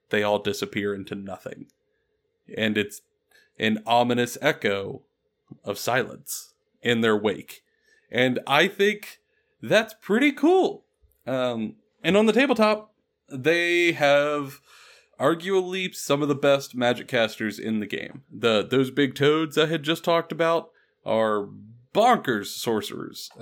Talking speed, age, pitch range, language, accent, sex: 130 wpm, 30-49, 120-195 Hz, English, American, male